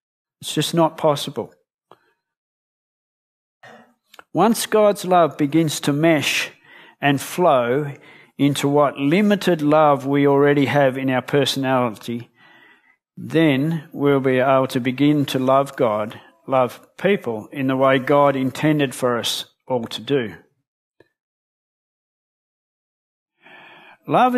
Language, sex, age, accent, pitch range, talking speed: English, male, 50-69, Australian, 140-175 Hz, 110 wpm